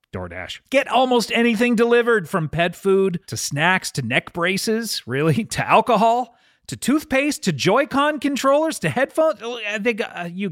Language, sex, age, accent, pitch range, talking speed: English, male, 40-59, American, 140-215 Hz, 160 wpm